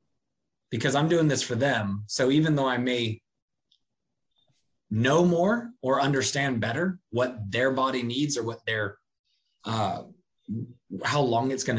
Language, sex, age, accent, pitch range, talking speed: English, male, 20-39, American, 115-145 Hz, 145 wpm